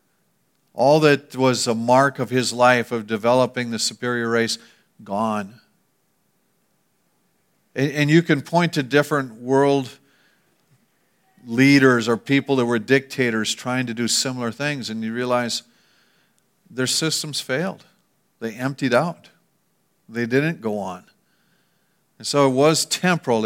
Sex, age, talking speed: male, 50-69, 130 wpm